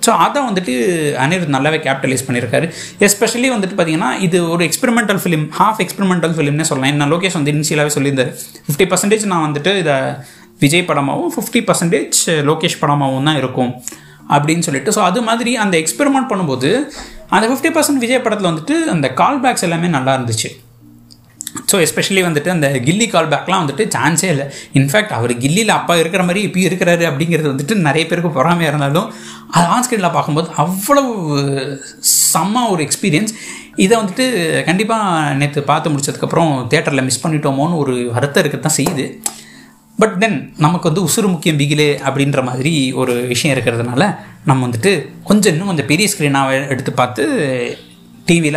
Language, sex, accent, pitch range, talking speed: Tamil, male, native, 135-190 Hz, 155 wpm